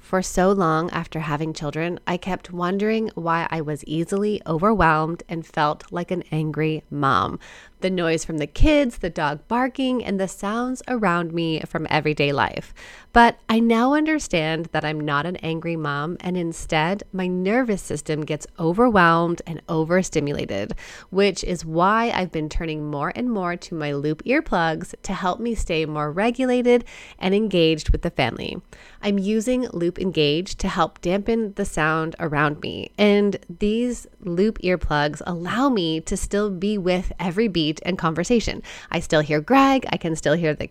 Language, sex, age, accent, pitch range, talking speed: English, female, 20-39, American, 160-205 Hz, 165 wpm